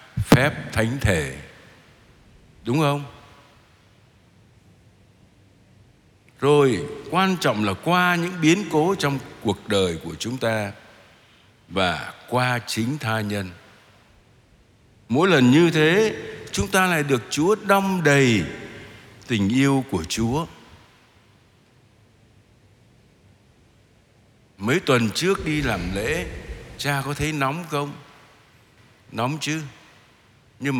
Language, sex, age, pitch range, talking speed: Vietnamese, male, 60-79, 105-140 Hz, 105 wpm